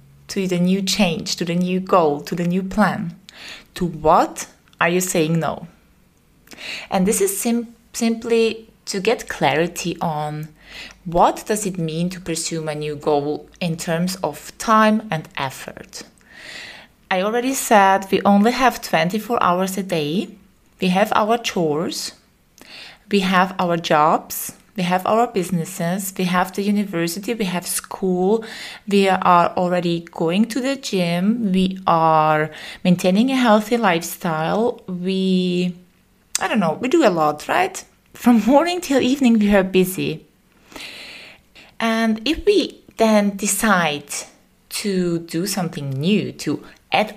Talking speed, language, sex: 140 wpm, English, female